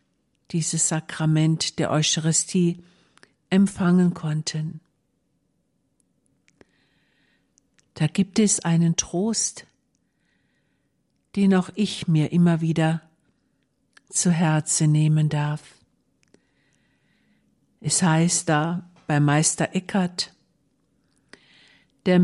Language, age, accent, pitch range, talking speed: German, 60-79, German, 160-185 Hz, 75 wpm